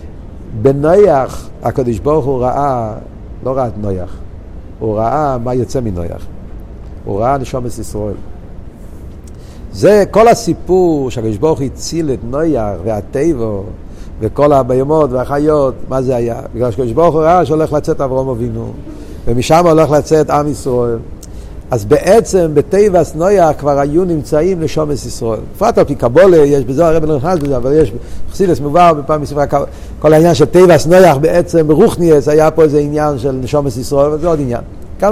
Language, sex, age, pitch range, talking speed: Hebrew, male, 50-69, 120-175 Hz, 155 wpm